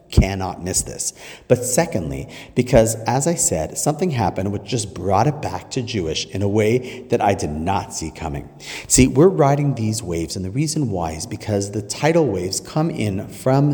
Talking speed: 190 wpm